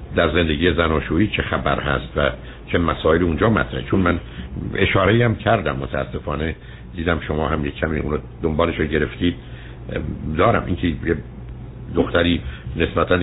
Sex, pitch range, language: male, 75-95 Hz, Persian